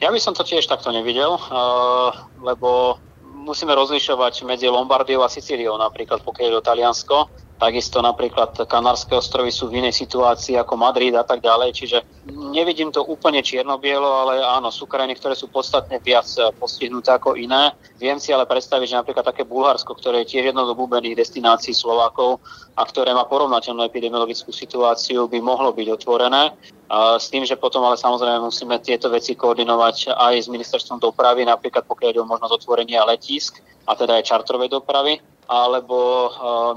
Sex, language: male, Slovak